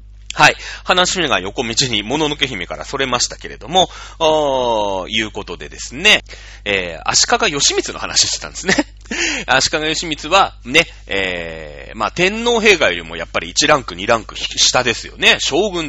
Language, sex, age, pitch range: Japanese, male, 30-49, 100-150 Hz